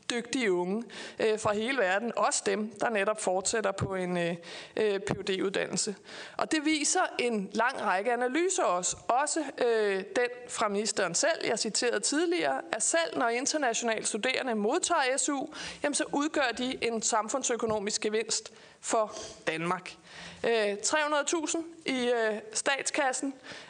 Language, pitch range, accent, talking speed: Danish, 210-290 Hz, native, 120 wpm